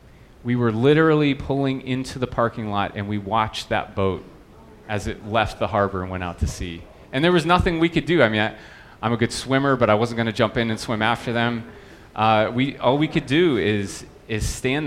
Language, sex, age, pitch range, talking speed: English, male, 30-49, 105-125 Hz, 230 wpm